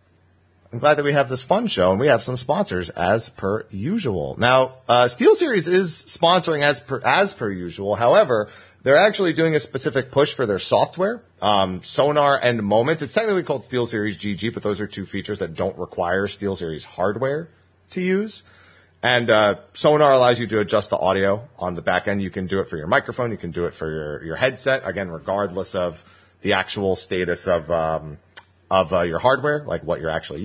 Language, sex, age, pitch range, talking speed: English, male, 40-59, 95-135 Hz, 205 wpm